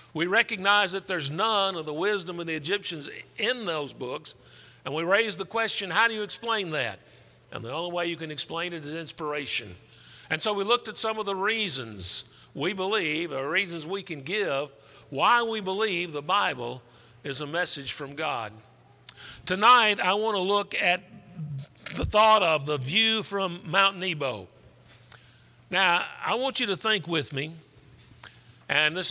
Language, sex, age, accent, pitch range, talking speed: English, male, 50-69, American, 145-205 Hz, 175 wpm